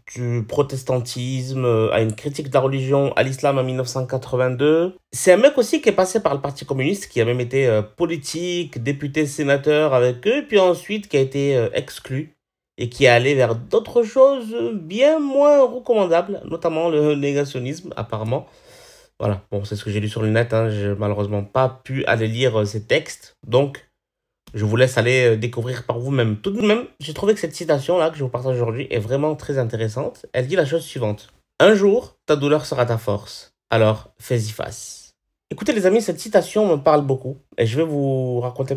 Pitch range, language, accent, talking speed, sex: 115-155 Hz, French, French, 195 wpm, male